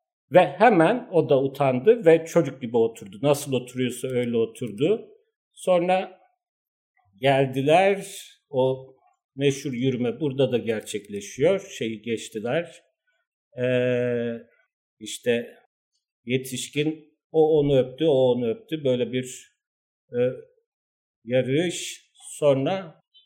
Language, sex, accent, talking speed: Turkish, male, native, 95 wpm